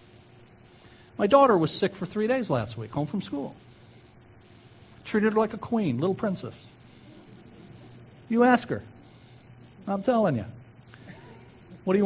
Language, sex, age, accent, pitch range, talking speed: English, male, 50-69, American, 120-200 Hz, 140 wpm